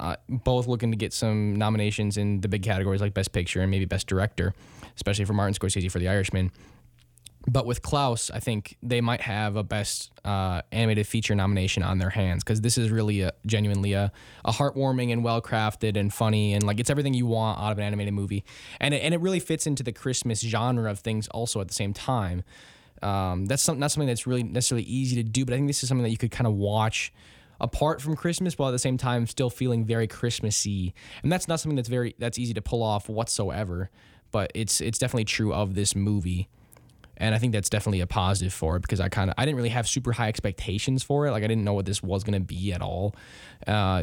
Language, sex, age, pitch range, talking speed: English, male, 10-29, 100-120 Hz, 235 wpm